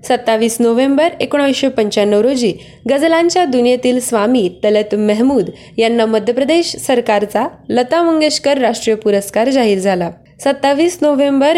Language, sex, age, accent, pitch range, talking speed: Marathi, female, 20-39, native, 215-275 Hz, 105 wpm